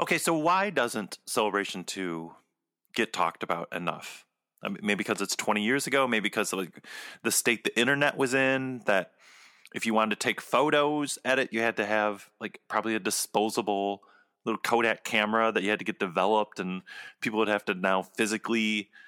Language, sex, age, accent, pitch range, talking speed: English, male, 30-49, American, 105-135 Hz, 190 wpm